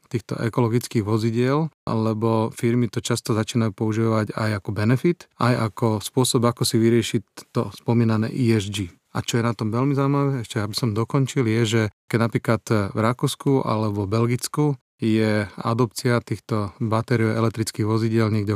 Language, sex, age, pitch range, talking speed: Slovak, male, 30-49, 110-130 Hz, 155 wpm